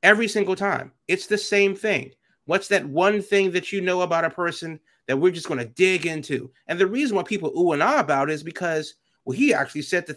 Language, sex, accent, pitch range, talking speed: English, male, American, 135-200 Hz, 240 wpm